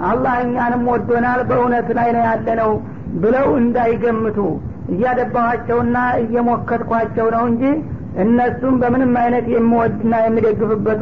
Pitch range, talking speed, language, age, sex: 230-250 Hz, 105 wpm, Amharic, 50-69, female